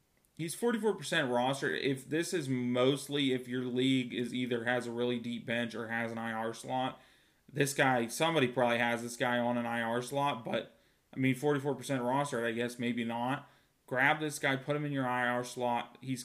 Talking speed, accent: 190 wpm, American